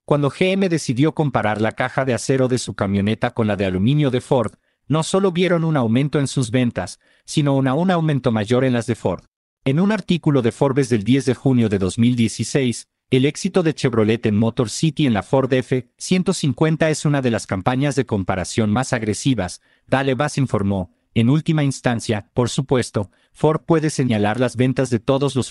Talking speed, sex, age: 190 wpm, male, 50-69